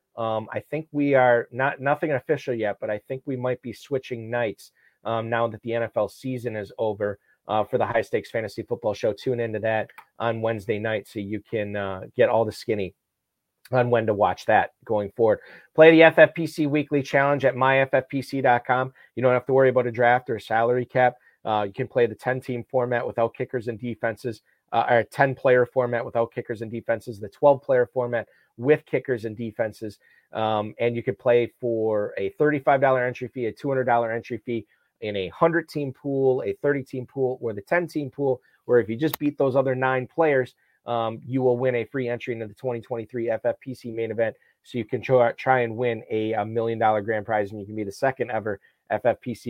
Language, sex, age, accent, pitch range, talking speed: English, male, 40-59, American, 110-130 Hz, 200 wpm